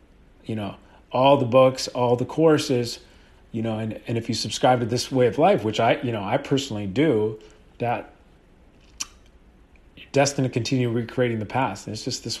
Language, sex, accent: English, male, American